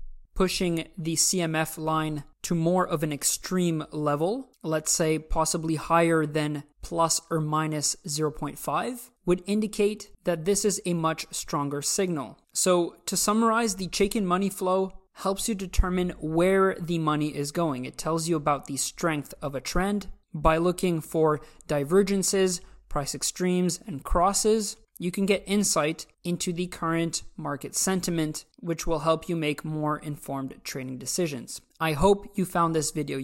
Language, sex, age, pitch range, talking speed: English, male, 20-39, 155-195 Hz, 150 wpm